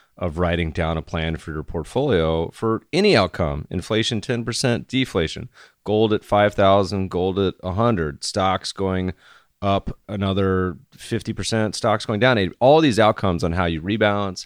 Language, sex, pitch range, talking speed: English, male, 85-100 Hz, 145 wpm